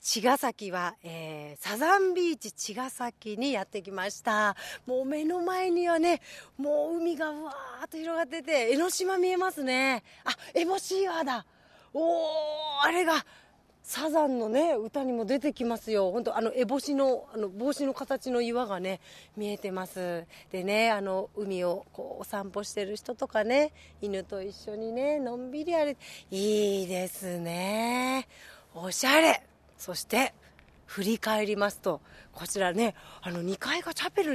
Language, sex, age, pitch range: Japanese, female, 40-59, 200-290 Hz